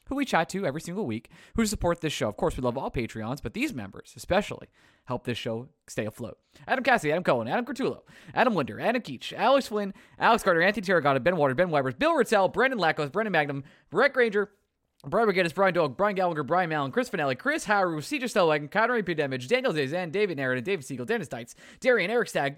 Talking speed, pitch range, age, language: 220 wpm, 150-235 Hz, 20-39, English